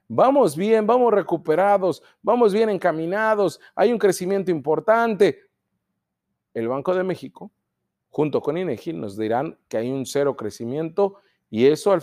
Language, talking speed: Spanish, 140 wpm